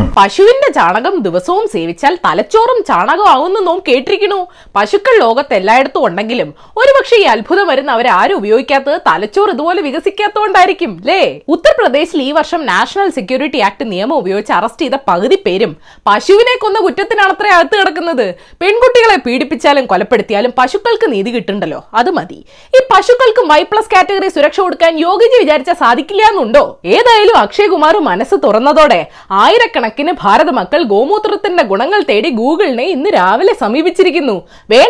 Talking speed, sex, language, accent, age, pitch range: 110 wpm, female, Malayalam, native, 20-39, 295-430 Hz